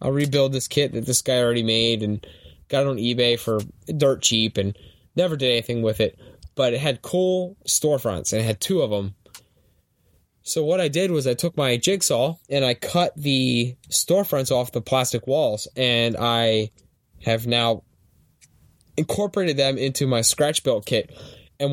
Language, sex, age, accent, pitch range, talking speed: English, male, 10-29, American, 115-145 Hz, 175 wpm